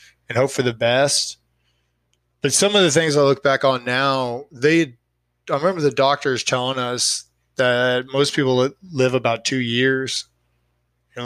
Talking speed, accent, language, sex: 160 wpm, American, English, male